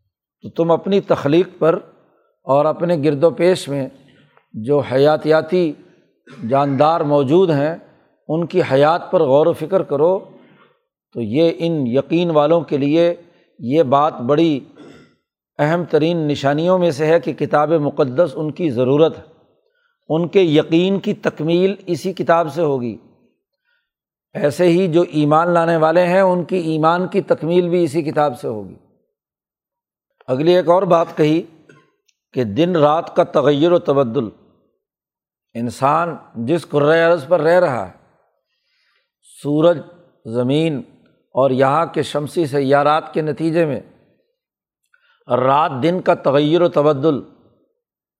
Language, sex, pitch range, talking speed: Urdu, male, 145-175 Hz, 135 wpm